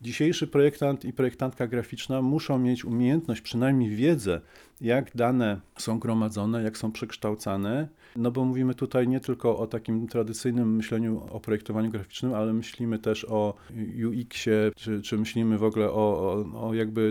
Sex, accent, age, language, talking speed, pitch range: male, native, 40-59, Polish, 155 wpm, 110-125 Hz